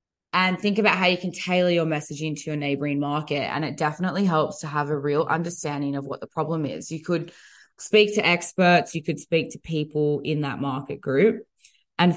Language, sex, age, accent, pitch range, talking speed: English, female, 20-39, Australian, 150-180 Hz, 205 wpm